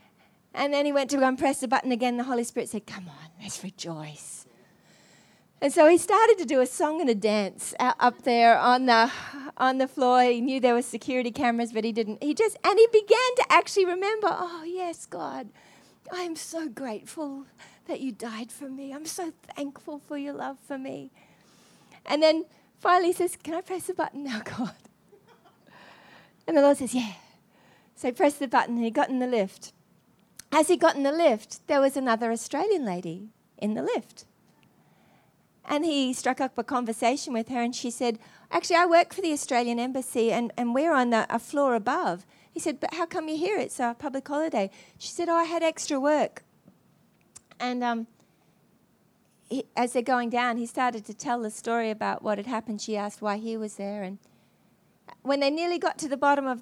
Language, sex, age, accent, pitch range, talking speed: English, female, 40-59, Australian, 225-305 Hz, 205 wpm